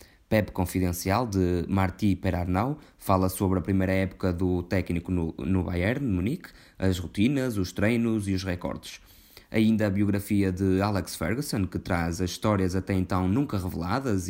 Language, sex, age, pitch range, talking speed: Portuguese, male, 20-39, 90-105 Hz, 160 wpm